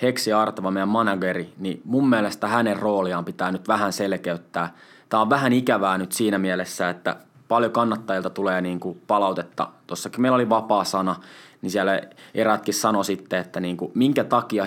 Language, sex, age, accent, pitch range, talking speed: Finnish, male, 20-39, native, 95-120 Hz, 170 wpm